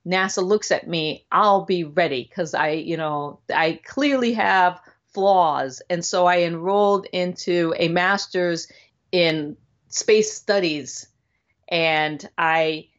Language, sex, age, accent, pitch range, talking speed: English, female, 40-59, American, 175-215 Hz, 125 wpm